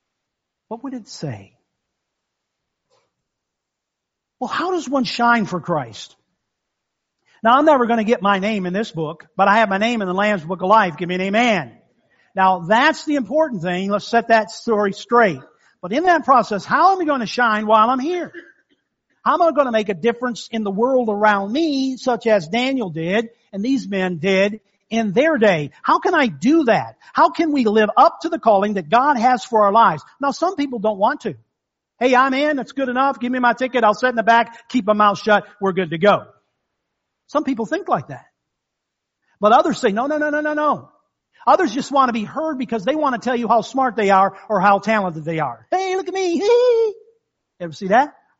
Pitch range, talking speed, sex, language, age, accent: 205-285 Hz, 215 wpm, male, English, 50-69, American